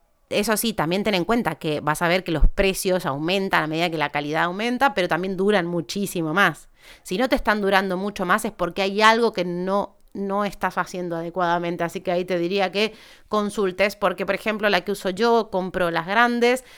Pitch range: 180-225 Hz